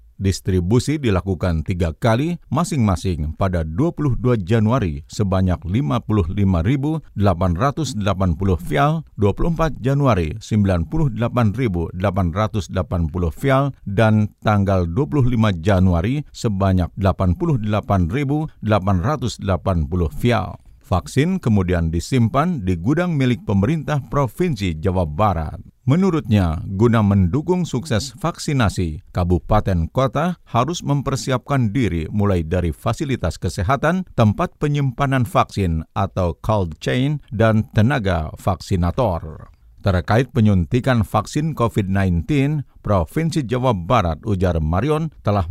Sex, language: male, Indonesian